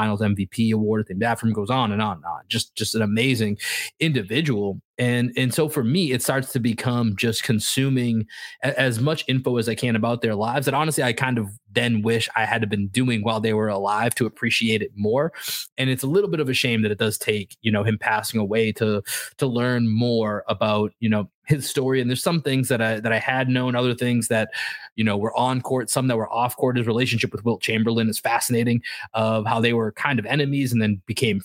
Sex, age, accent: male, 20-39, American